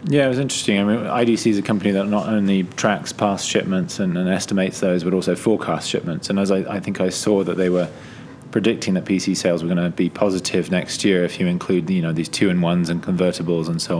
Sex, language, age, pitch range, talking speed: male, English, 20-39, 85-95 Hz, 240 wpm